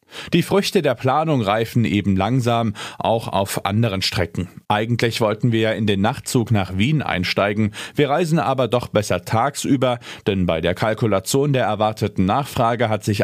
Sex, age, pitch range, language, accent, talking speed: male, 40-59, 110-145 Hz, German, German, 165 wpm